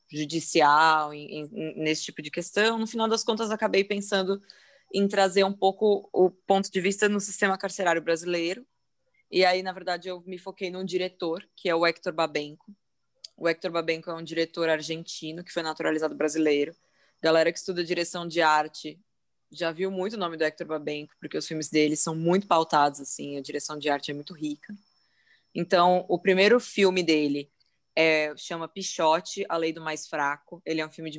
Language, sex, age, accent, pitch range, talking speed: Portuguese, female, 20-39, Brazilian, 160-190 Hz, 185 wpm